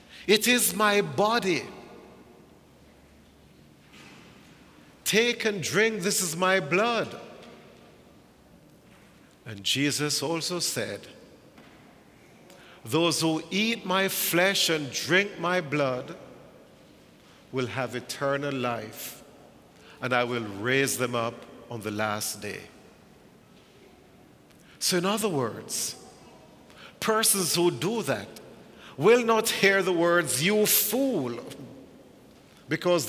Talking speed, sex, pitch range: 100 wpm, male, 120-185 Hz